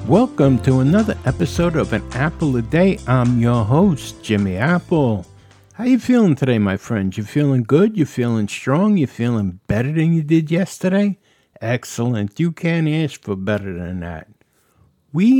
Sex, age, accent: male, 60-79, American